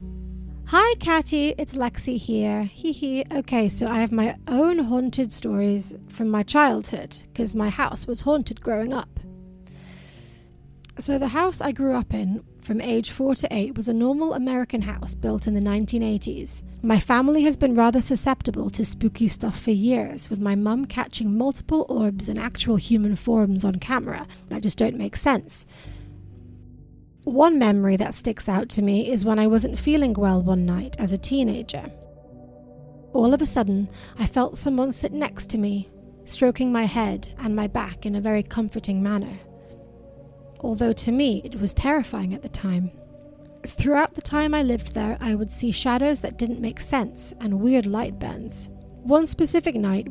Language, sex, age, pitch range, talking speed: English, female, 30-49, 205-260 Hz, 170 wpm